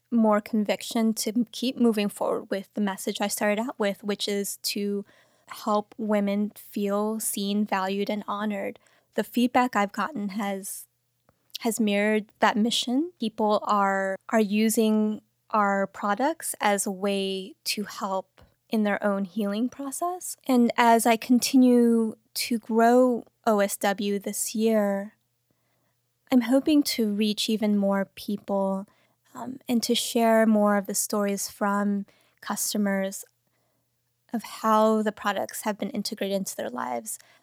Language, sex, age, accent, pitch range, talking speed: English, female, 20-39, American, 200-230 Hz, 135 wpm